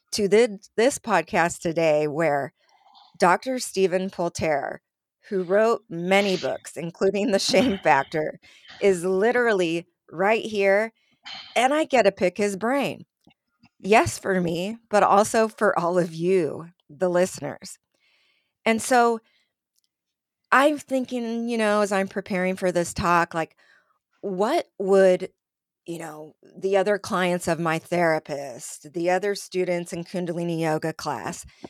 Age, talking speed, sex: 30-49, 130 wpm, female